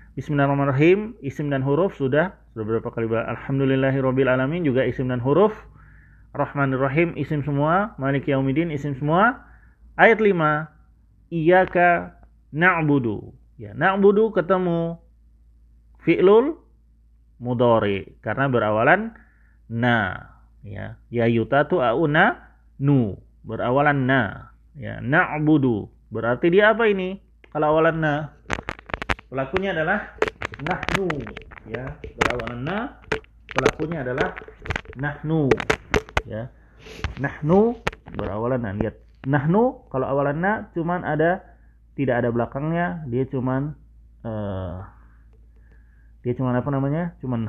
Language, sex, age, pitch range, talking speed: Indonesian, male, 30-49, 95-150 Hz, 95 wpm